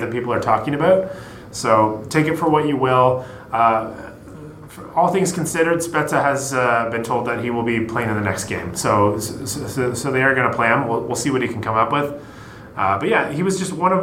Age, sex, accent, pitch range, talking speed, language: 30-49, male, American, 115-145 Hz, 245 wpm, English